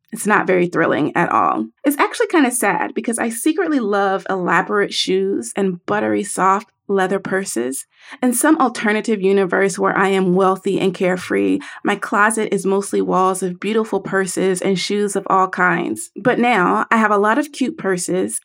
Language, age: English, 30-49